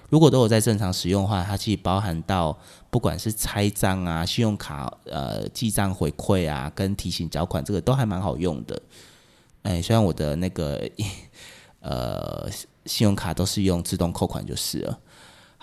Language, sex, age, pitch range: Chinese, male, 20-39, 85-110 Hz